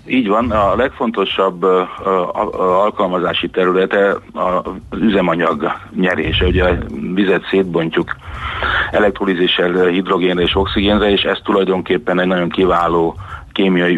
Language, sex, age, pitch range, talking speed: Hungarian, male, 40-59, 85-95 Hz, 120 wpm